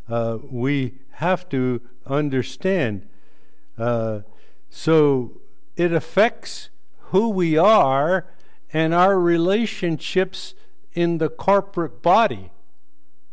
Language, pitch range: English, 120-165 Hz